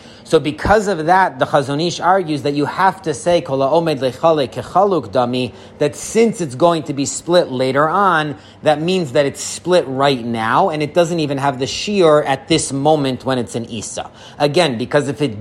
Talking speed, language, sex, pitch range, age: 195 wpm, English, male, 130-170 Hz, 30-49